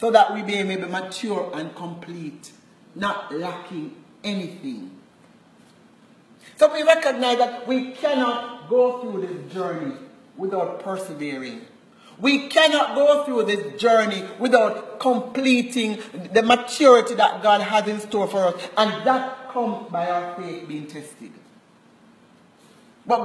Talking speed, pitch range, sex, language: 125 wpm, 180-245 Hz, male, English